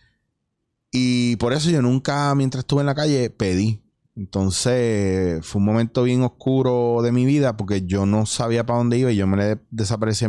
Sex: male